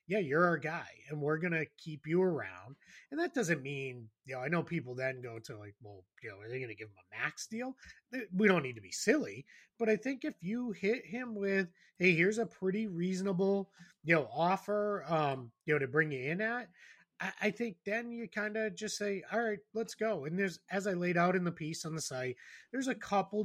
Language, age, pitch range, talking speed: English, 30-49, 135-180 Hz, 240 wpm